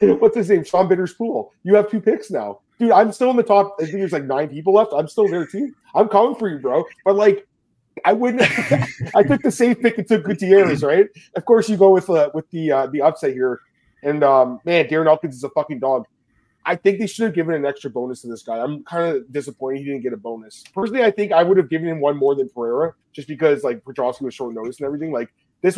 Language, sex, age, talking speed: English, male, 30-49, 260 wpm